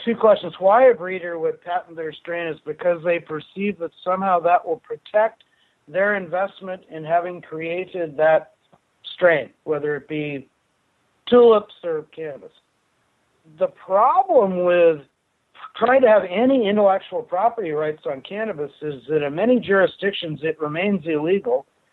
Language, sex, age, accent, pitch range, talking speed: English, male, 60-79, American, 155-210 Hz, 140 wpm